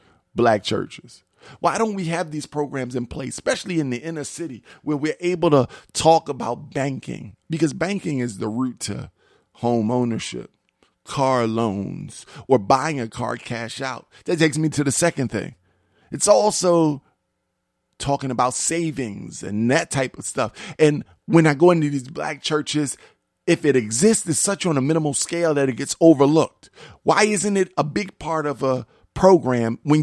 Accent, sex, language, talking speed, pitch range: American, male, English, 170 wpm, 130-185 Hz